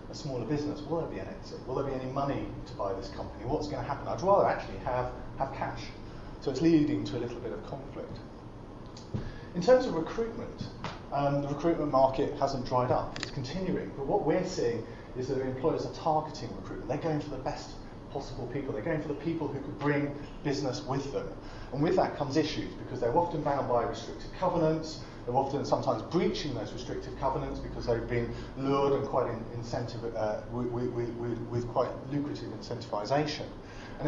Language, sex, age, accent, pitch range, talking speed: English, male, 30-49, British, 120-145 Hz, 195 wpm